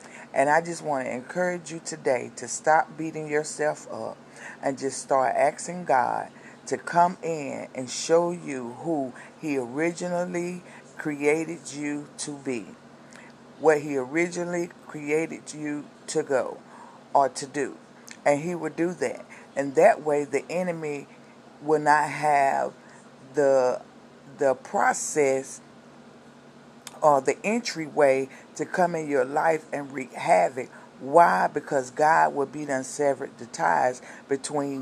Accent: American